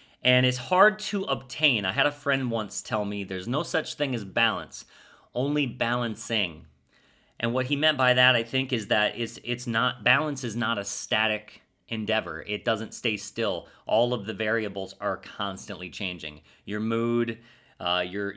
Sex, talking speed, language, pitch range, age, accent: male, 175 wpm, English, 105-125 Hz, 30-49, American